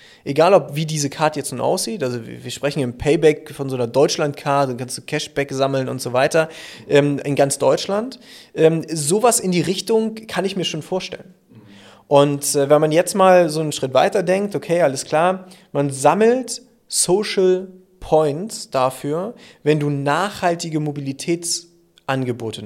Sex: male